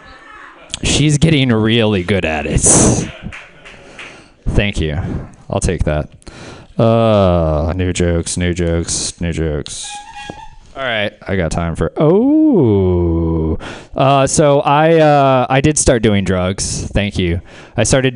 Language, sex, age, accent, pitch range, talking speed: English, male, 20-39, American, 90-130 Hz, 125 wpm